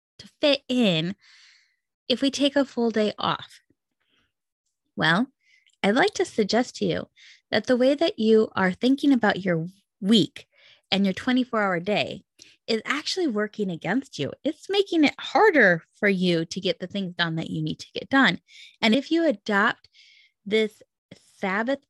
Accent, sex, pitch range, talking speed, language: American, female, 180-260 Hz, 160 wpm, English